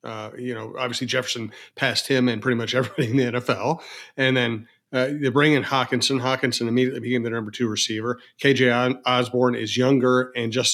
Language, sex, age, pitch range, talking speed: English, male, 40-59, 125-135 Hz, 190 wpm